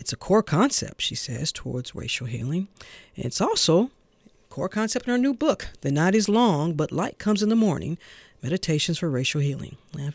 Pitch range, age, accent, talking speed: 140-190 Hz, 40-59, American, 200 wpm